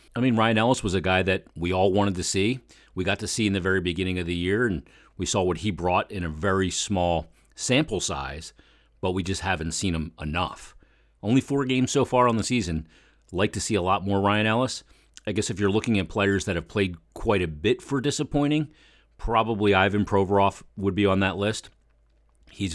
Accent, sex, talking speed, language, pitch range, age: American, male, 220 wpm, English, 90-110 Hz, 40-59